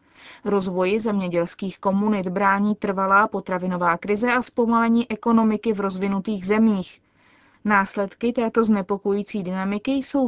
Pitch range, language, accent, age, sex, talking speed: 190-230 Hz, Czech, native, 30-49, female, 105 wpm